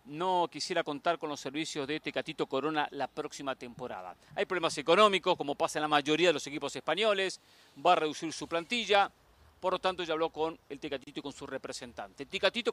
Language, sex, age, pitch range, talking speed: Spanish, male, 40-59, 150-210 Hz, 200 wpm